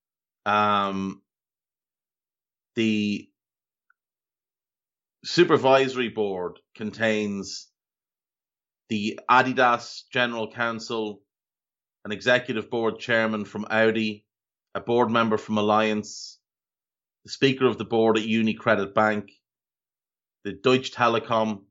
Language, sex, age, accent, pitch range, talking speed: English, male, 30-49, Irish, 105-125 Hz, 85 wpm